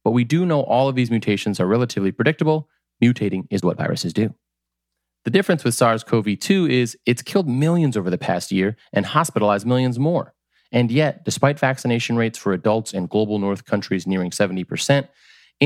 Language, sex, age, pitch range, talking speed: English, male, 30-49, 100-140 Hz, 180 wpm